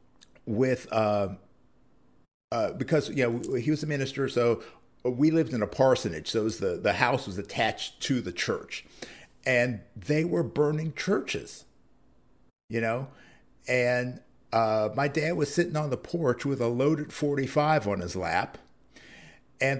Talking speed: 160 wpm